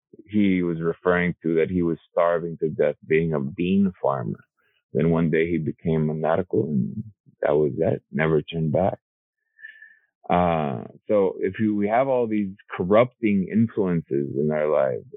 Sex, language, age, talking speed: male, English, 30-49, 160 wpm